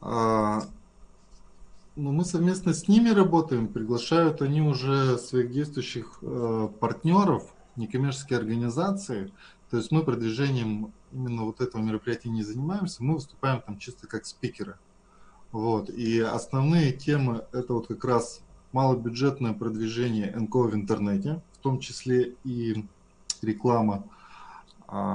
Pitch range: 110-135 Hz